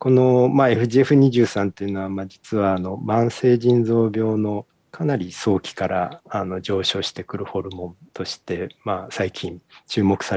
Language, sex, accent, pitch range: Japanese, male, native, 95-115 Hz